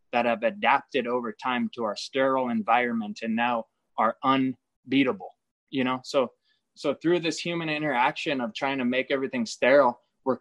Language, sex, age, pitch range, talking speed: English, male, 20-39, 120-160 Hz, 160 wpm